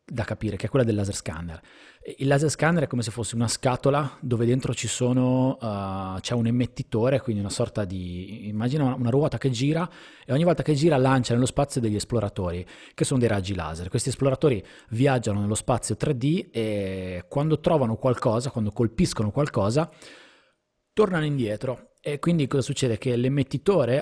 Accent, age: native, 30-49